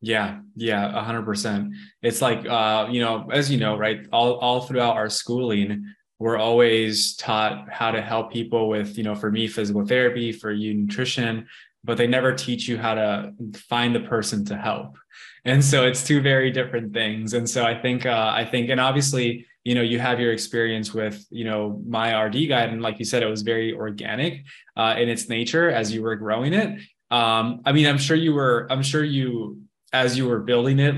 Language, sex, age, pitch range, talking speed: English, male, 20-39, 110-135 Hz, 210 wpm